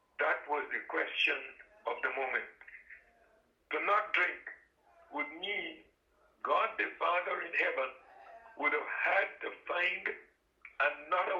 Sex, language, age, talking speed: male, English, 60-79, 115 wpm